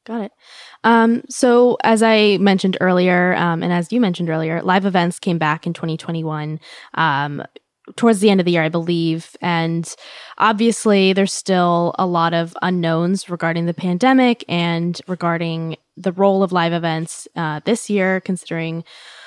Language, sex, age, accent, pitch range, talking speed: English, female, 10-29, American, 165-210 Hz, 160 wpm